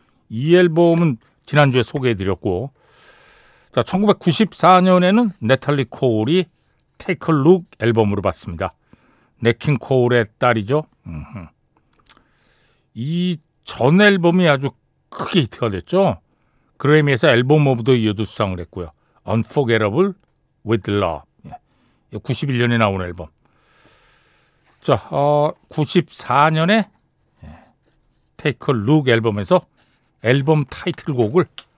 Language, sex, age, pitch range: Korean, male, 60-79, 110-165 Hz